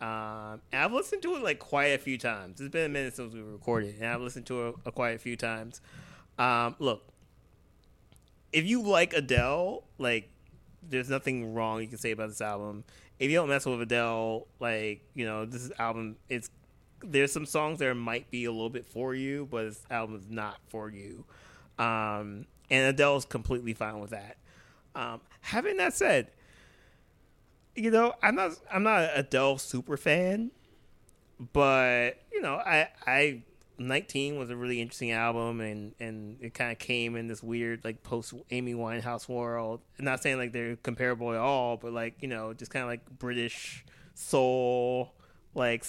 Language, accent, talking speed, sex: English, American, 180 wpm, male